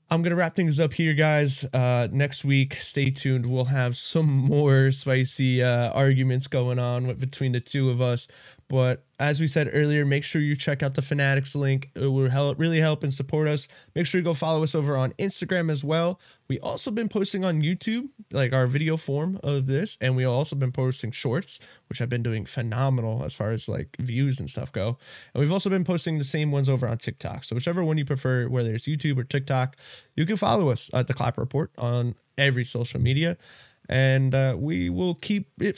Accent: American